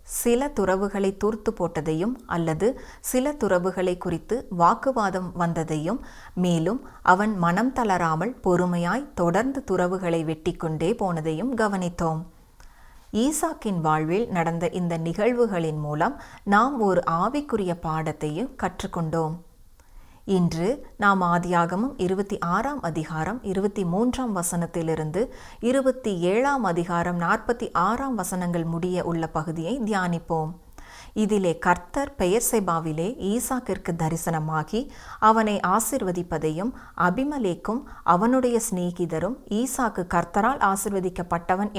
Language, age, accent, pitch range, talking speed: Tamil, 30-49, native, 170-225 Hz, 90 wpm